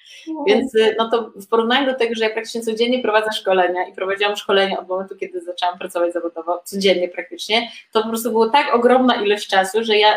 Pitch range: 200-230 Hz